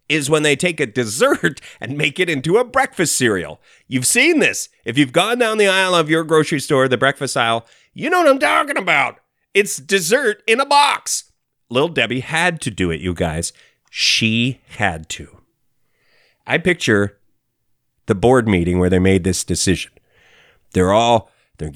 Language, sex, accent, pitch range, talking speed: English, male, American, 95-145 Hz, 175 wpm